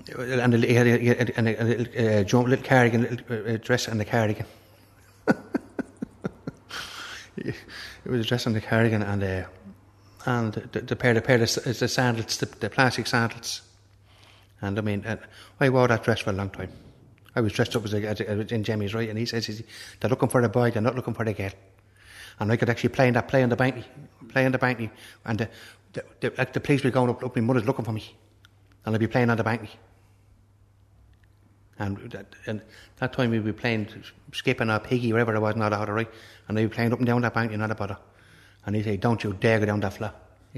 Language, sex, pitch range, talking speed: English, male, 105-120 Hz, 225 wpm